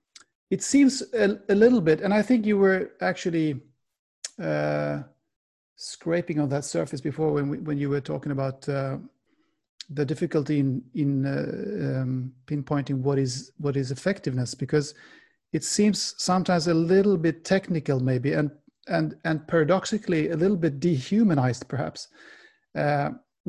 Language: English